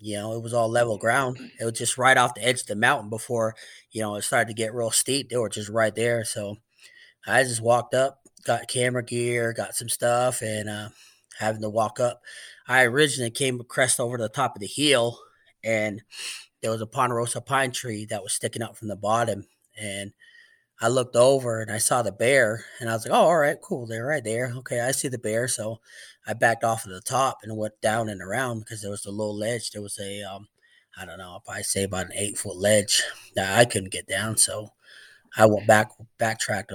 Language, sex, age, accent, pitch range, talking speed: English, male, 20-39, American, 110-125 Hz, 230 wpm